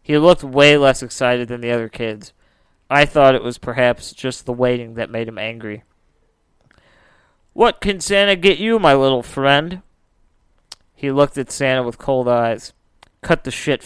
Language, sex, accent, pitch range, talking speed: English, male, American, 120-140 Hz, 170 wpm